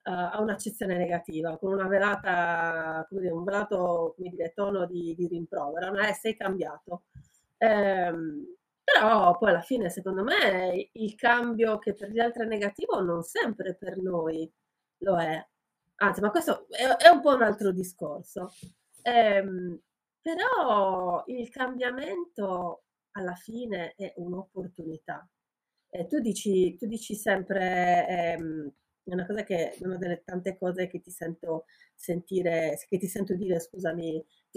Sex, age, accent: female, 30-49, native